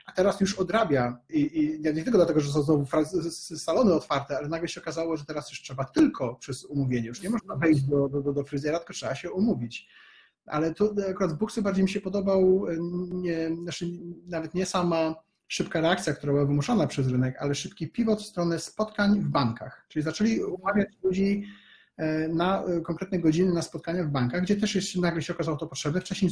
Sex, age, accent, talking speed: male, 30-49, native, 195 wpm